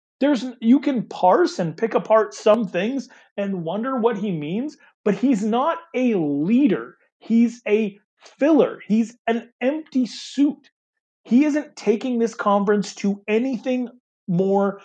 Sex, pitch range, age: male, 170-240 Hz, 30-49